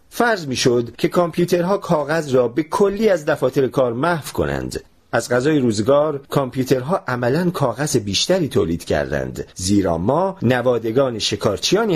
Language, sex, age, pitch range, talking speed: Persian, male, 40-59, 110-170 Hz, 135 wpm